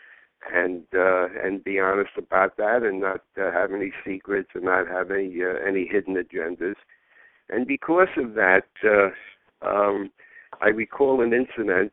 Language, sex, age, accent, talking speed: English, male, 60-79, American, 155 wpm